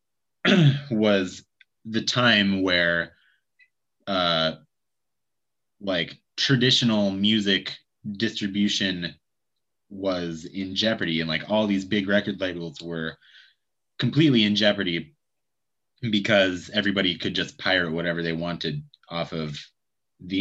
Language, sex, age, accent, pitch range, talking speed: English, male, 30-49, American, 85-110 Hz, 100 wpm